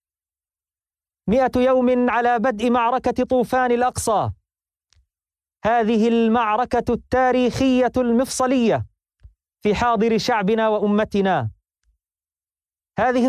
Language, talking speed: Arabic, 70 wpm